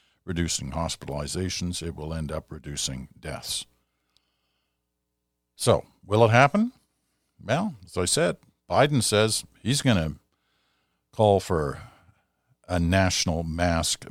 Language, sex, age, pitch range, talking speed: English, male, 50-69, 70-105 Hz, 110 wpm